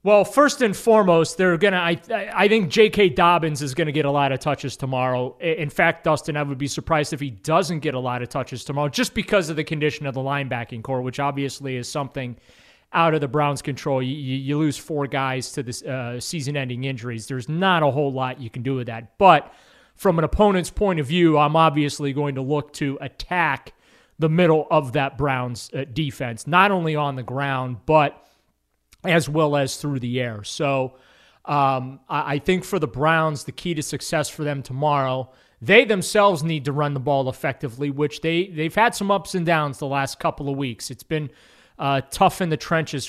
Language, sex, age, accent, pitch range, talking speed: English, male, 30-49, American, 135-160 Hz, 205 wpm